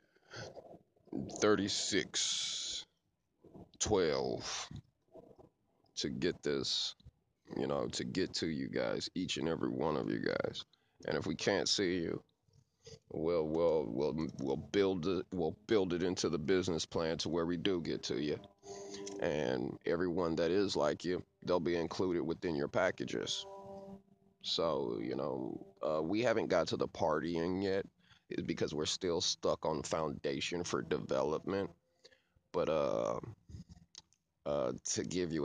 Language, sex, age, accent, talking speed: English, male, 30-49, American, 140 wpm